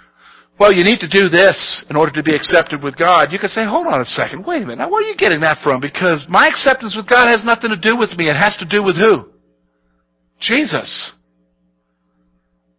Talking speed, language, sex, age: 225 wpm, English, male, 50-69